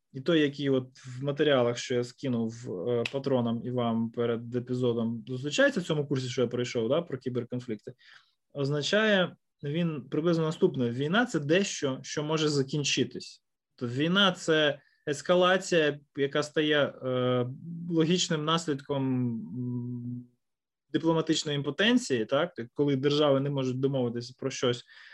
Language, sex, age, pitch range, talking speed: Ukrainian, male, 20-39, 130-175 Hz, 135 wpm